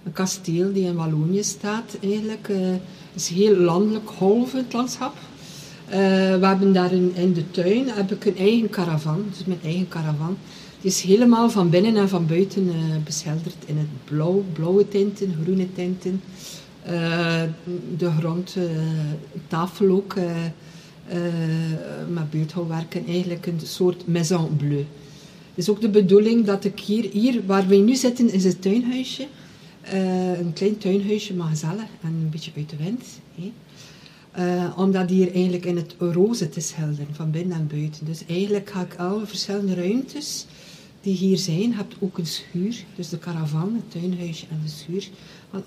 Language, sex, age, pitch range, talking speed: Dutch, female, 50-69, 165-195 Hz, 175 wpm